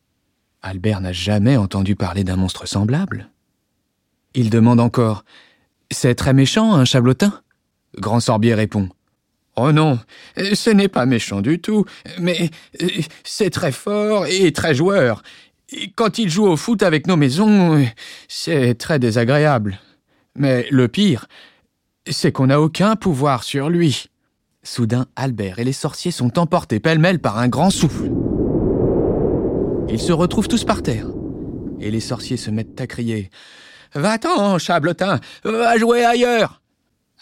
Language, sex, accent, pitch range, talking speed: French, male, French, 110-170 Hz, 140 wpm